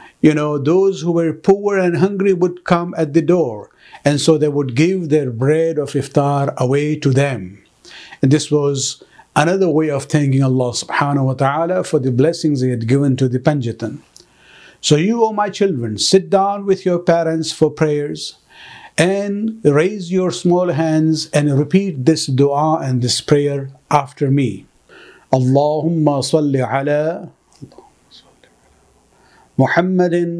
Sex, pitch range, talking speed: male, 135-175 Hz, 150 wpm